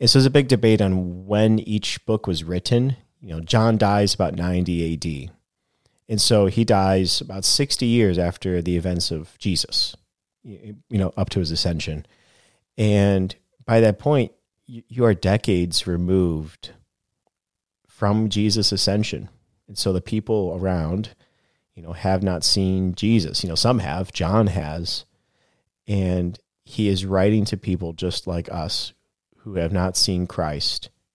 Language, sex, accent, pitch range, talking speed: English, male, American, 85-105 Hz, 150 wpm